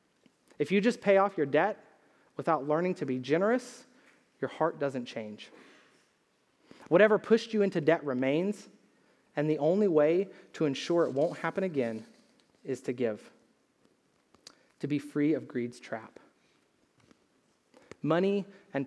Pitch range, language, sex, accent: 145-195 Hz, English, male, American